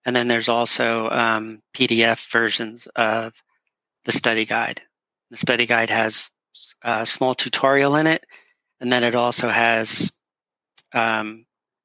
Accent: American